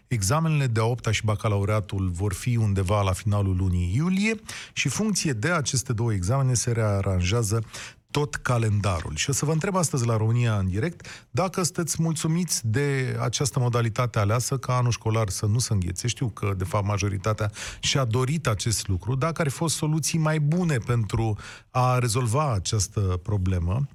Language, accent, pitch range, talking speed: Romanian, native, 105-135 Hz, 165 wpm